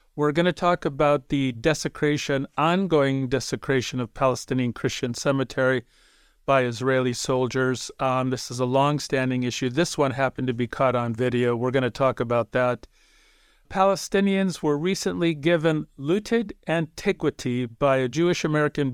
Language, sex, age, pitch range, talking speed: English, male, 50-69, 125-145 Hz, 145 wpm